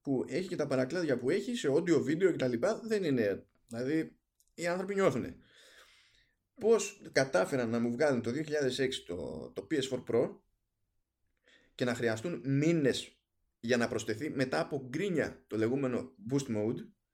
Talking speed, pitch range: 155 wpm, 115-170 Hz